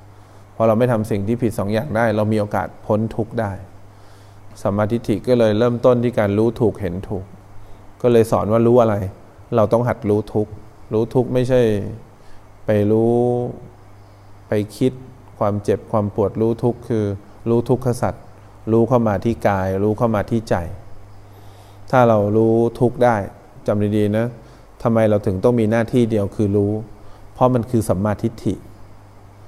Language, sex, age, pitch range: English, male, 20-39, 100-115 Hz